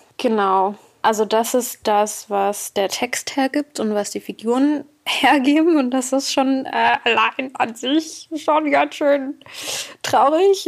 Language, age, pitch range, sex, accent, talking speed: German, 20-39, 205-280 Hz, female, German, 145 wpm